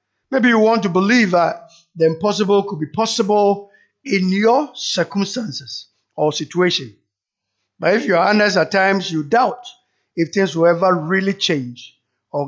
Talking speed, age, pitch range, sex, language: 155 wpm, 50-69, 170-230 Hz, male, English